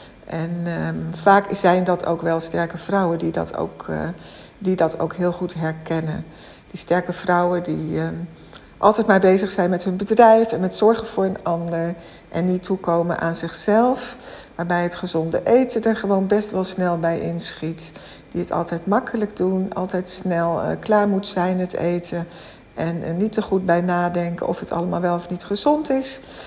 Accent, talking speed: Dutch, 170 wpm